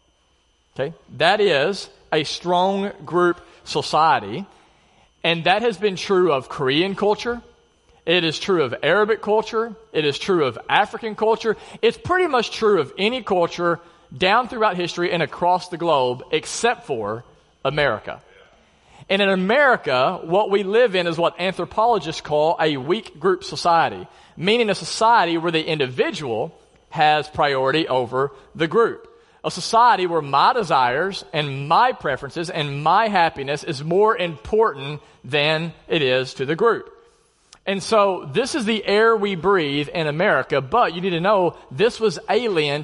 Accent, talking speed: American, 150 wpm